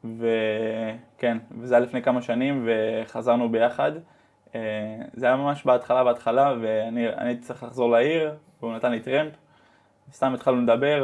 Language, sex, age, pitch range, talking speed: Hebrew, male, 20-39, 115-140 Hz, 135 wpm